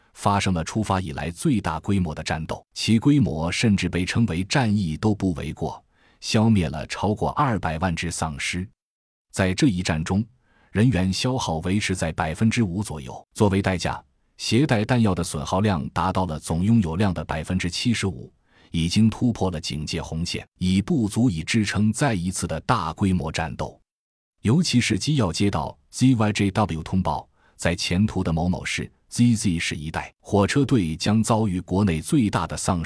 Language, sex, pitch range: Chinese, male, 85-110 Hz